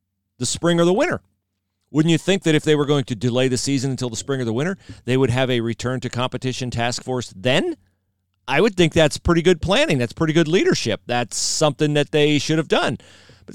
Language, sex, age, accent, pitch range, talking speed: English, male, 40-59, American, 100-150 Hz, 230 wpm